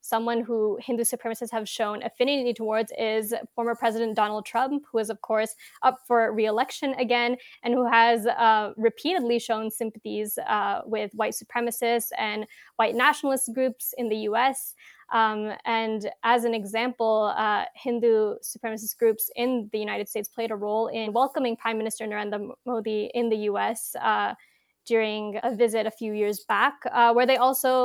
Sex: female